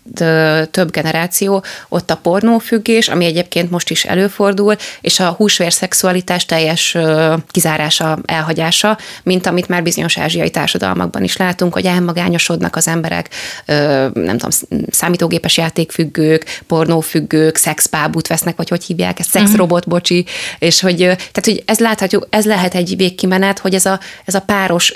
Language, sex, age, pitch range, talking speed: Hungarian, female, 20-39, 165-185 Hz, 135 wpm